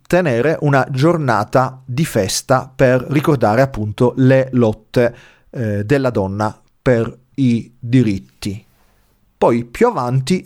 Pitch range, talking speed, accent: 120-155 Hz, 110 wpm, native